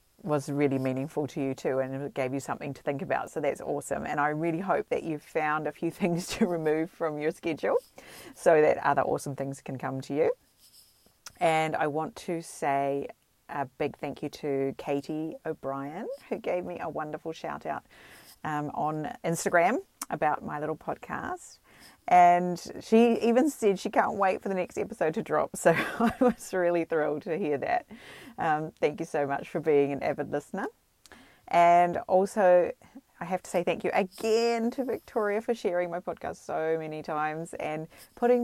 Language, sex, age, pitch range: English, female, 40-59, 150-205 Hz